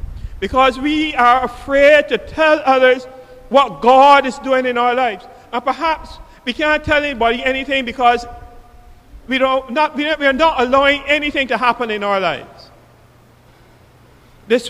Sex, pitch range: male, 240-310 Hz